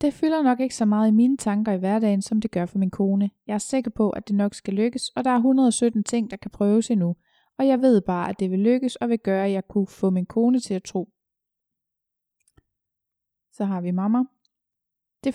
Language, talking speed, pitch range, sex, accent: Danish, 235 wpm, 195-235 Hz, female, native